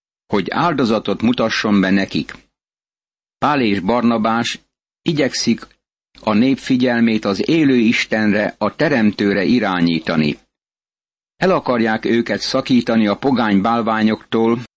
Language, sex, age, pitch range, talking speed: Hungarian, male, 60-79, 105-120 Hz, 100 wpm